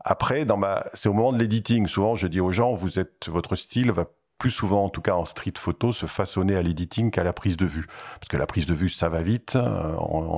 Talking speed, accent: 255 wpm, French